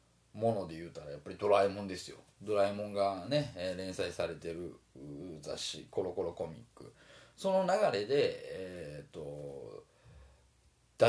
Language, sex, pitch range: Japanese, male, 85-125 Hz